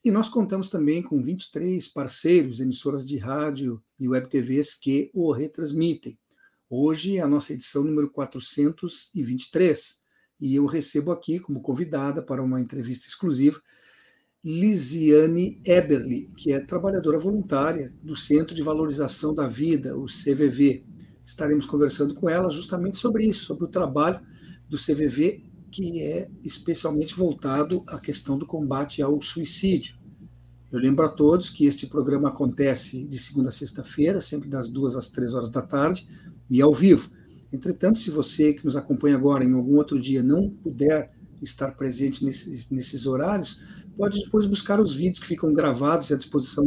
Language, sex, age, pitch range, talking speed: Portuguese, male, 50-69, 140-175 Hz, 155 wpm